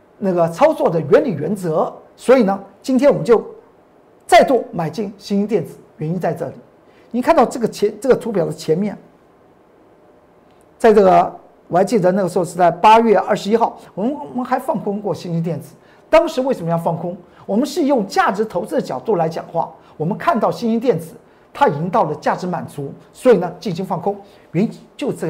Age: 50-69